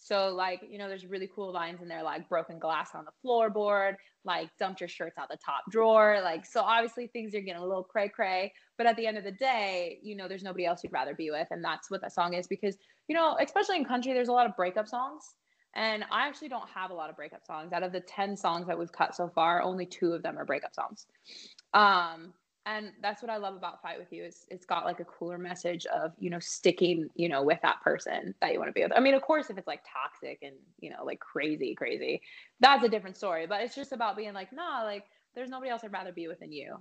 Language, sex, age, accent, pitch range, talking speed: English, female, 20-39, American, 175-225 Hz, 260 wpm